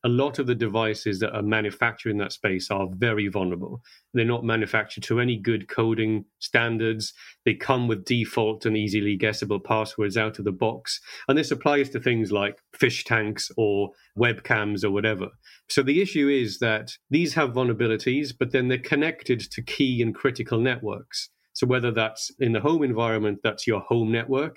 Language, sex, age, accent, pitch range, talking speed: English, male, 40-59, British, 105-130 Hz, 180 wpm